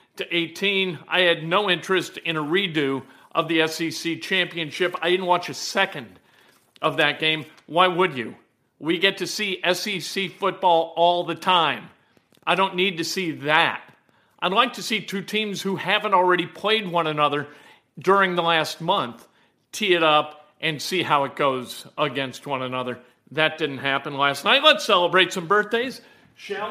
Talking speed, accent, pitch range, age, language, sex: 170 wpm, American, 160-230 Hz, 50-69, English, male